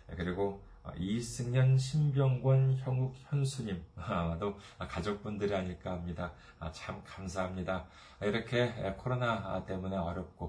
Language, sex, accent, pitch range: Korean, male, native, 90-115 Hz